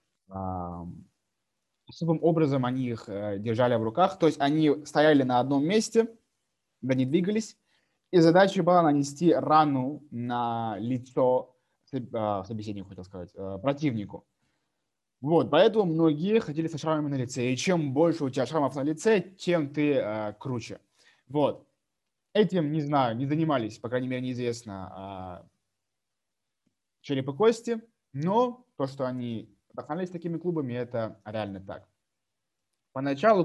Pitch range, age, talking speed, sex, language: 105-155 Hz, 20-39, 130 wpm, male, Russian